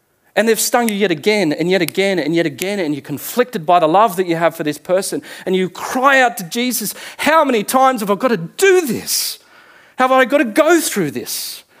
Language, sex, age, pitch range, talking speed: English, male, 40-59, 155-220 Hz, 235 wpm